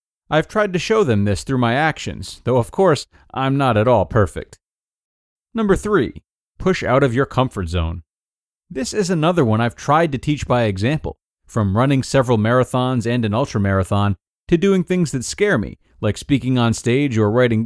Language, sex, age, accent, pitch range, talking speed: English, male, 30-49, American, 105-150 Hz, 185 wpm